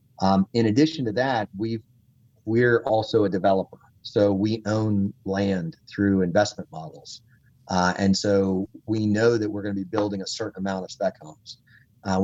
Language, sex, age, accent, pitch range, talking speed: English, male, 40-59, American, 95-110 Hz, 165 wpm